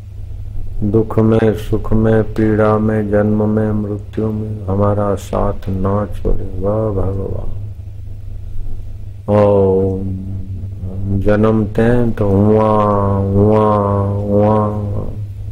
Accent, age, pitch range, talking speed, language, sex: native, 50-69, 95-105 Hz, 90 wpm, Hindi, male